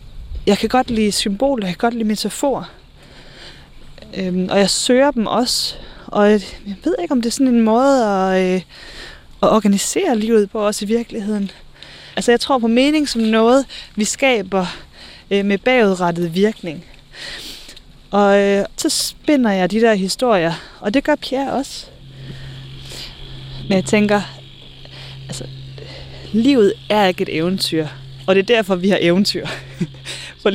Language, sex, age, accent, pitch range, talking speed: Danish, female, 20-39, native, 175-230 Hz, 155 wpm